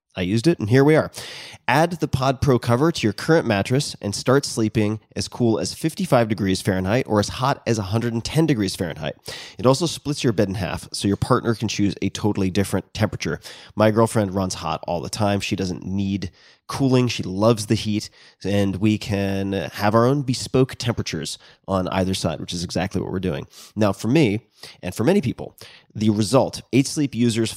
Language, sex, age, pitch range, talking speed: English, male, 30-49, 100-125 Hz, 200 wpm